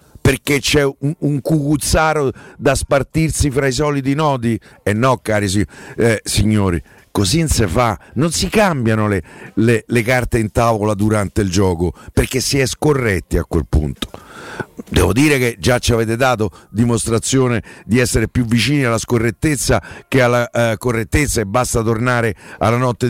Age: 50-69